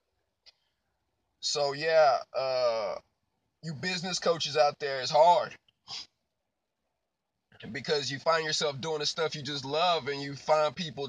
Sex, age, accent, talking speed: male, 20-39, American, 130 wpm